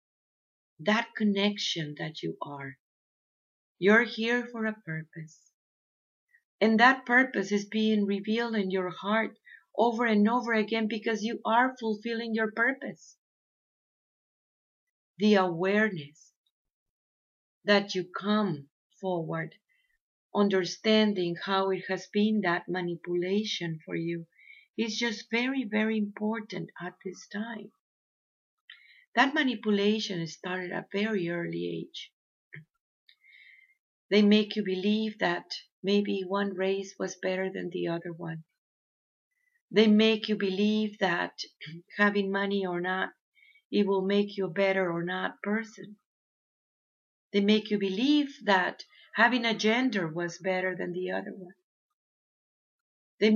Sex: female